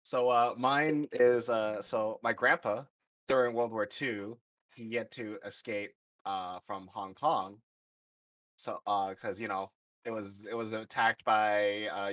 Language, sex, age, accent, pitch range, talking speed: English, male, 20-39, American, 95-120 Hz, 160 wpm